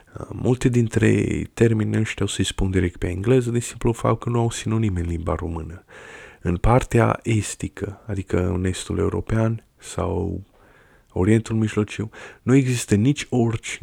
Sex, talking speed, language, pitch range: male, 150 wpm, Romanian, 95-110 Hz